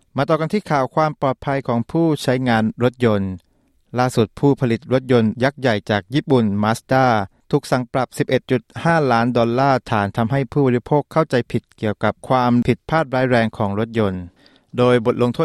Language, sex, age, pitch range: Thai, male, 20-39, 105-135 Hz